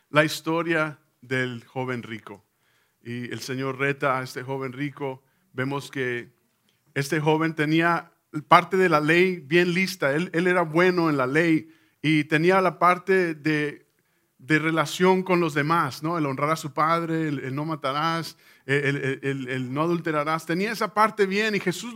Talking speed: 170 wpm